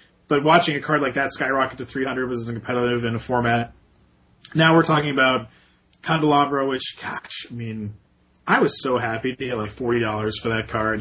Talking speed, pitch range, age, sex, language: 190 wpm, 120-165 Hz, 30-49, male, English